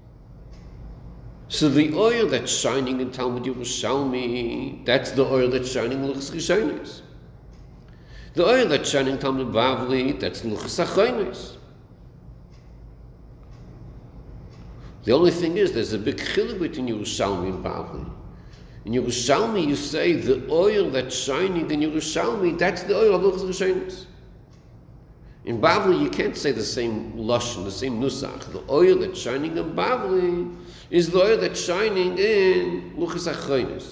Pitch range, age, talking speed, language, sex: 120-185 Hz, 60-79, 135 wpm, English, male